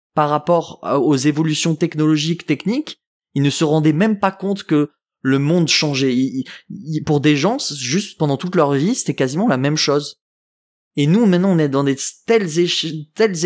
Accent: French